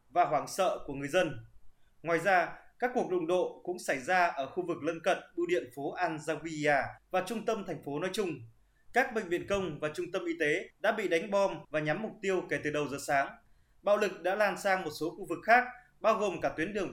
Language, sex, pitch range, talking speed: Vietnamese, male, 160-205 Hz, 240 wpm